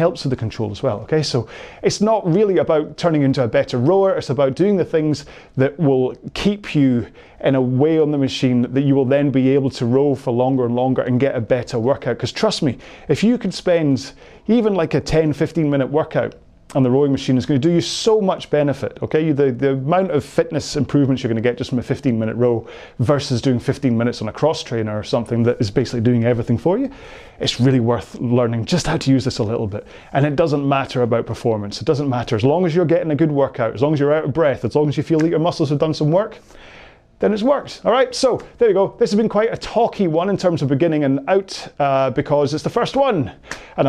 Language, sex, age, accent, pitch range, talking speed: English, male, 30-49, British, 125-160 Hz, 250 wpm